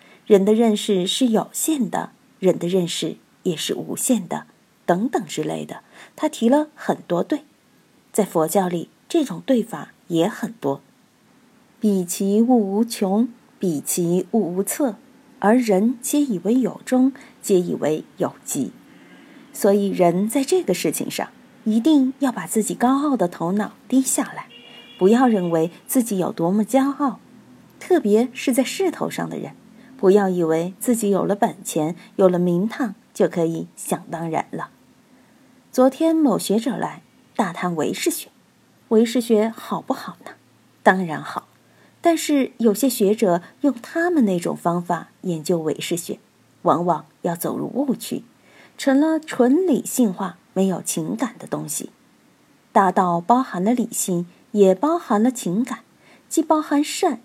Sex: female